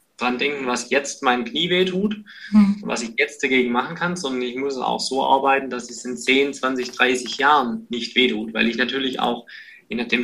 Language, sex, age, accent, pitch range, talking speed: German, male, 20-39, German, 120-200 Hz, 200 wpm